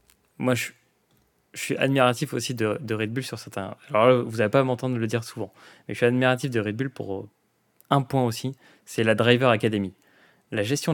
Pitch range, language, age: 105-125 Hz, French, 20-39